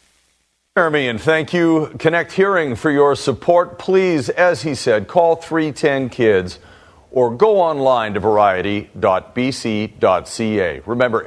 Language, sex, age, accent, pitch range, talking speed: English, male, 50-69, American, 110-170 Hz, 115 wpm